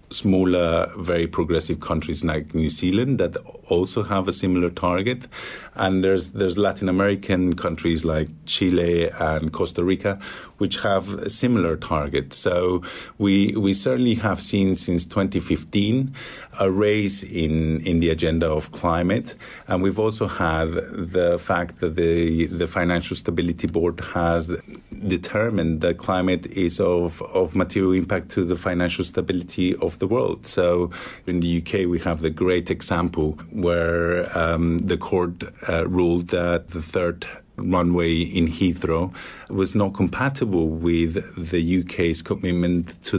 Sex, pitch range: male, 85-95 Hz